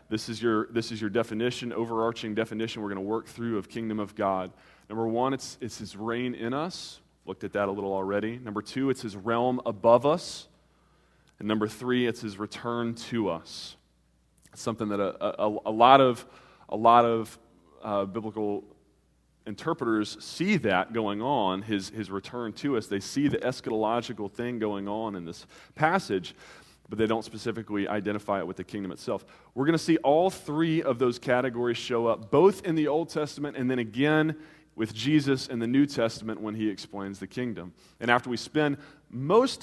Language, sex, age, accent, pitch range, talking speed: English, male, 20-39, American, 105-130 Hz, 190 wpm